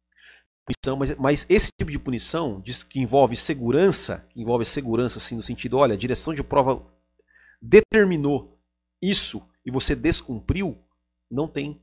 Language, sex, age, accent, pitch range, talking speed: Portuguese, male, 40-59, Brazilian, 110-175 Hz, 125 wpm